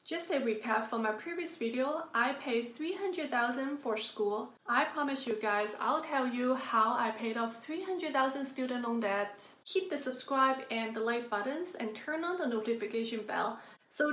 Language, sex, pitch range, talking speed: English, female, 215-265 Hz, 175 wpm